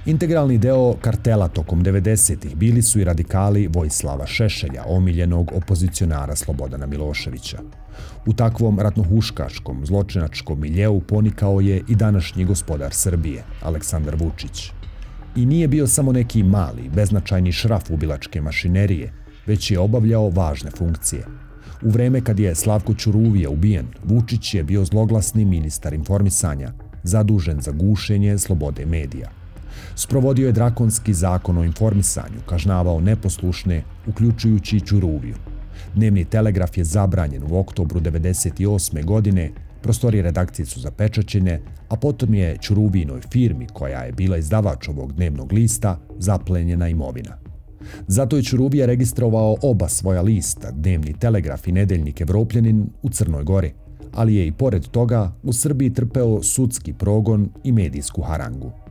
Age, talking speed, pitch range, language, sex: 40-59, 130 wpm, 85-110 Hz, Croatian, male